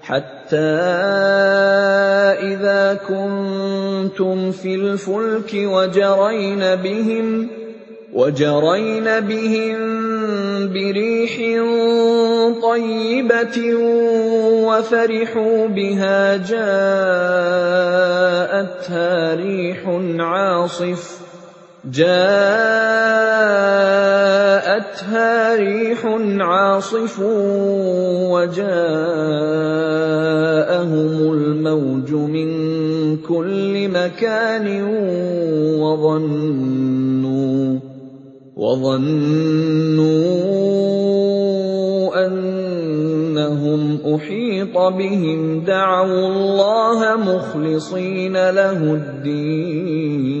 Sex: male